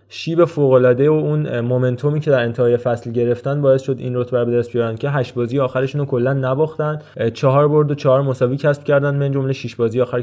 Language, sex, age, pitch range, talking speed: Persian, male, 20-39, 120-135 Hz, 210 wpm